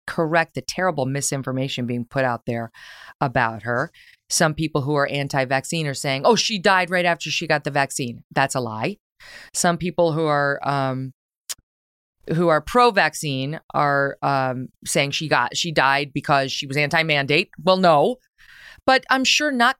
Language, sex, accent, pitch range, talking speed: English, female, American, 135-215 Hz, 165 wpm